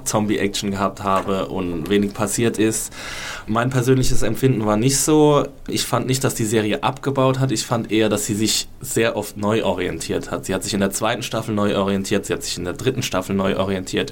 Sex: male